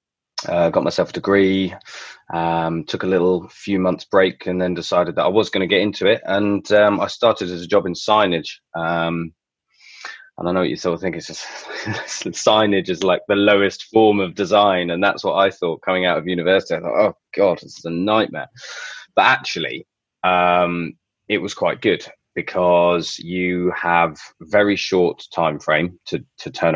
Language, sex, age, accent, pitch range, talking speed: English, male, 20-39, British, 80-95 Hz, 195 wpm